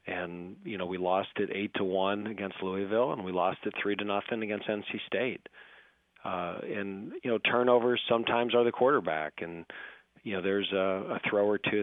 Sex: male